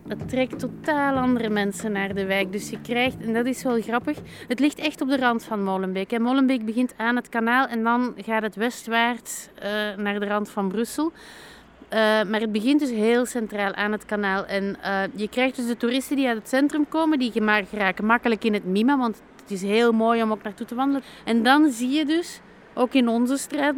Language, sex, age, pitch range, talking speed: Dutch, female, 30-49, 210-255 Hz, 215 wpm